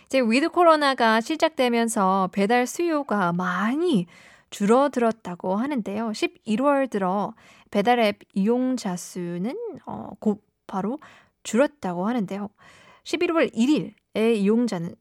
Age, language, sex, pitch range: 20-39, Korean, female, 195-260 Hz